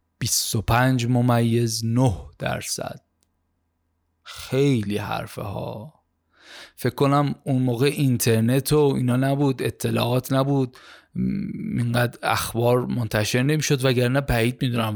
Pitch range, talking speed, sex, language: 115-145 Hz, 100 wpm, male, Persian